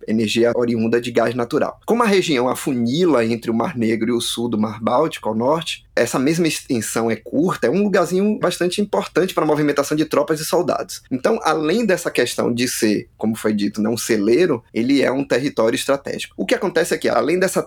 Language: Portuguese